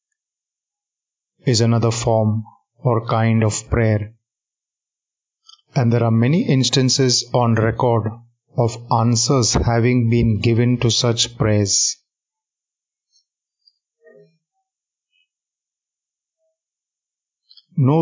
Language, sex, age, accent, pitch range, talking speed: Hindi, male, 30-49, native, 115-135 Hz, 75 wpm